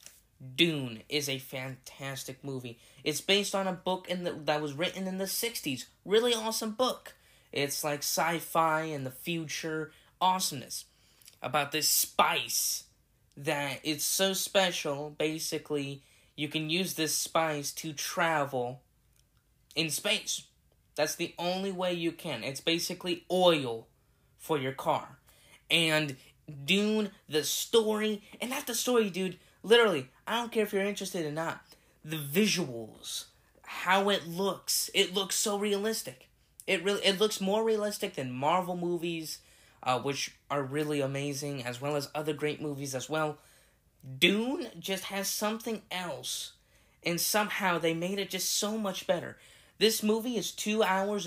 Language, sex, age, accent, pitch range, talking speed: English, male, 10-29, American, 145-195 Hz, 145 wpm